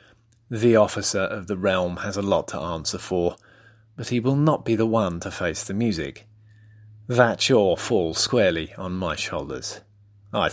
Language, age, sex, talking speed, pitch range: English, 30-49, male, 175 wpm, 85-120 Hz